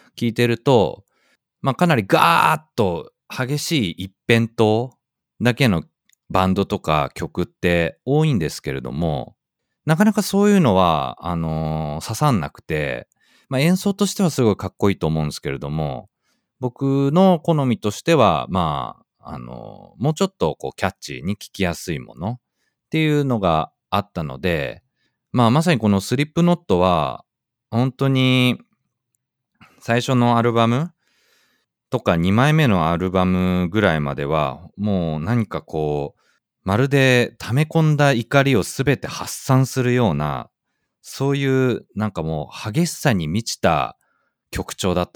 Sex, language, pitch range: male, Japanese, 90-145 Hz